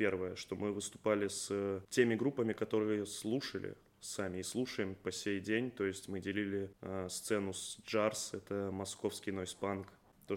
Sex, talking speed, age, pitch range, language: male, 150 wpm, 20-39, 100-110 Hz, Russian